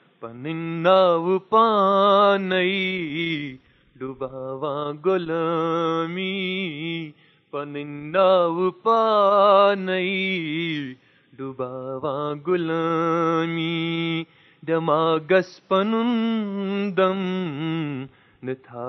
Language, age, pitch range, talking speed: Urdu, 30-49, 165-245 Hz, 40 wpm